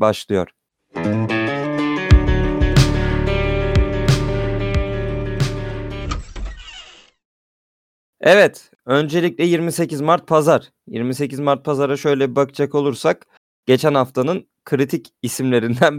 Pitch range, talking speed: 105-140 Hz, 65 wpm